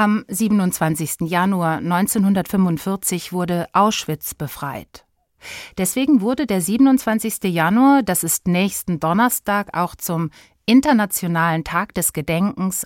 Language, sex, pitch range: German, female, 160-210 Hz